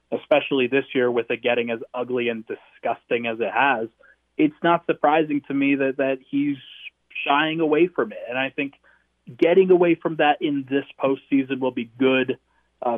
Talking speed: 180 wpm